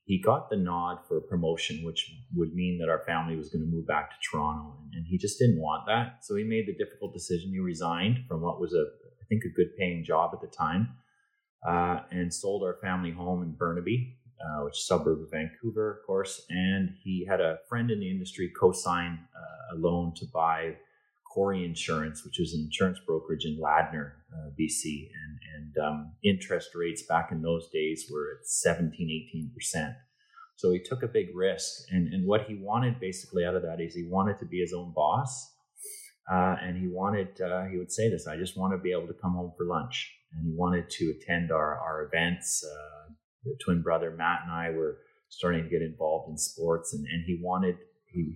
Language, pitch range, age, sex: English, 80-95 Hz, 30-49, male